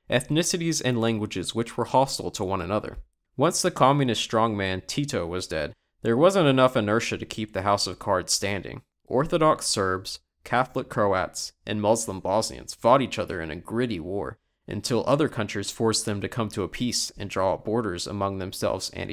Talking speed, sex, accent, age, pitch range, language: 180 wpm, male, American, 20-39, 100-120 Hz, English